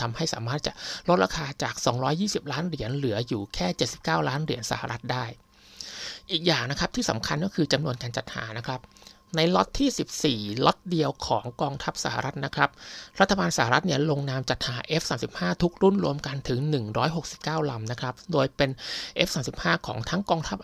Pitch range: 120-155 Hz